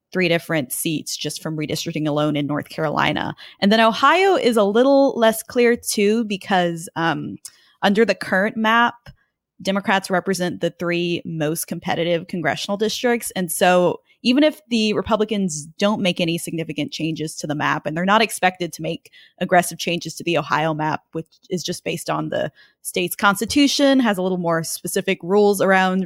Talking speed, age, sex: 170 wpm, 20-39, female